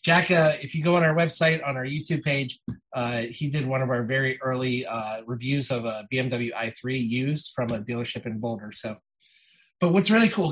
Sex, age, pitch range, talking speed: male, 30-49, 115-140 Hz, 210 wpm